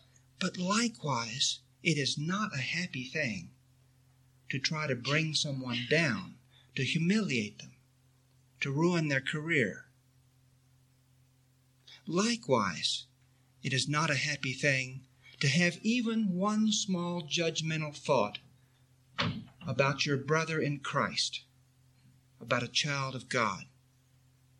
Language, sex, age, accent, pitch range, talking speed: English, male, 60-79, American, 130-170 Hz, 110 wpm